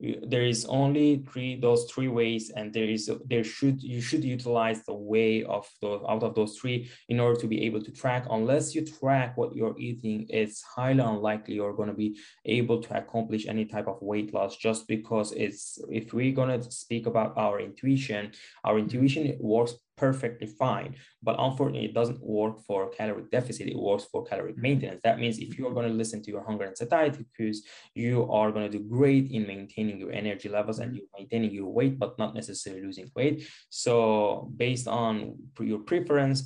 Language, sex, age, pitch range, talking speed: English, male, 20-39, 105-125 Hz, 200 wpm